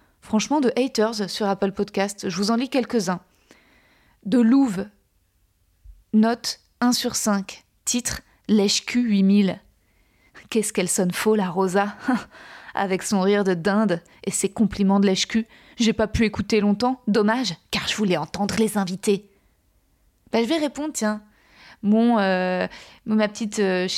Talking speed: 150 wpm